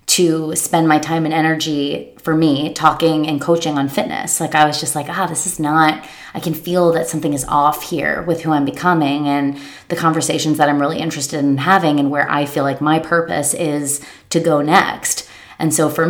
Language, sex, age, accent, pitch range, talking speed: English, female, 20-39, American, 150-170 Hz, 215 wpm